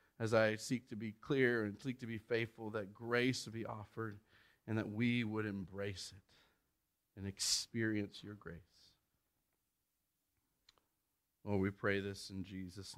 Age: 40-59